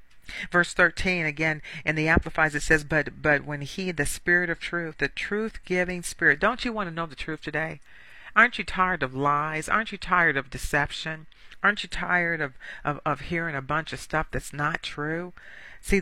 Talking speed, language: 200 wpm, English